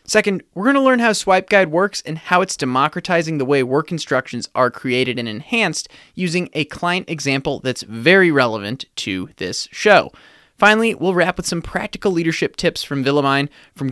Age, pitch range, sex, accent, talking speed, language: 20-39, 130-180 Hz, male, American, 175 wpm, English